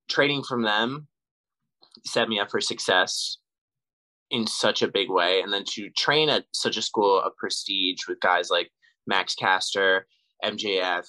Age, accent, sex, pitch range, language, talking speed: 20-39, American, male, 100-150 Hz, English, 155 wpm